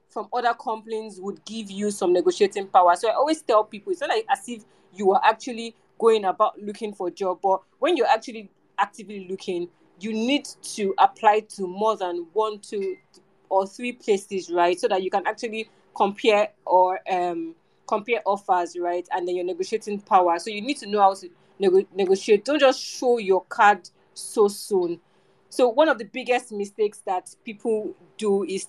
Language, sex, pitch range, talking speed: English, female, 190-235 Hz, 185 wpm